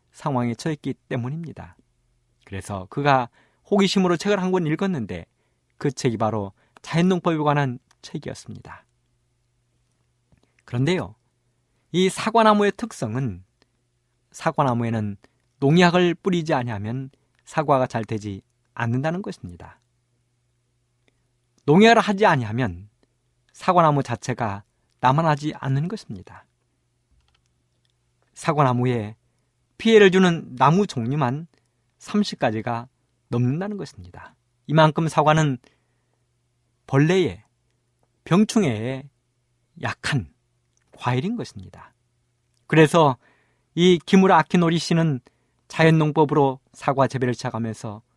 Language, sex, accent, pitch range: Korean, male, native, 120-160 Hz